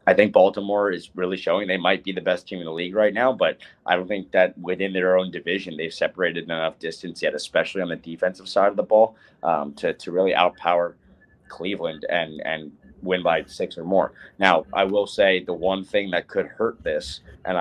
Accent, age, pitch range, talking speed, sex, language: American, 30-49, 95-115 Hz, 220 wpm, male, English